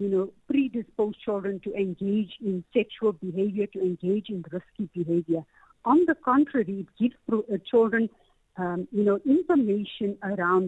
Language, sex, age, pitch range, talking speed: English, female, 60-79, 195-235 Hz, 140 wpm